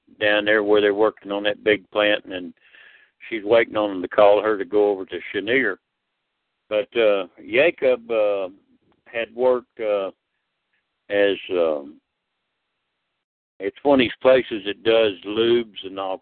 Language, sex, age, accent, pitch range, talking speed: English, male, 60-79, American, 105-130 Hz, 150 wpm